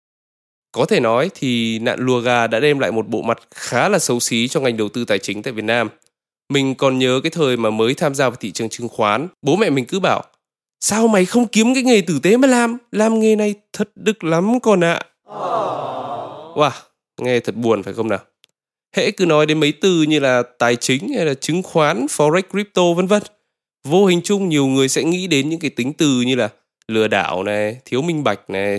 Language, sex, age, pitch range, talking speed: Vietnamese, male, 20-39, 120-170 Hz, 230 wpm